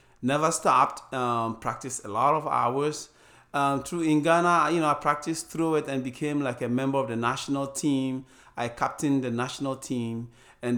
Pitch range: 120-150 Hz